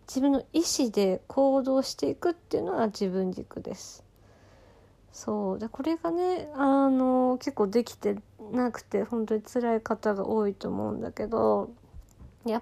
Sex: female